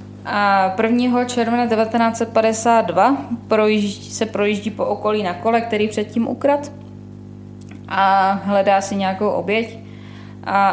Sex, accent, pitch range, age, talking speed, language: female, native, 180-220 Hz, 20-39, 105 wpm, Czech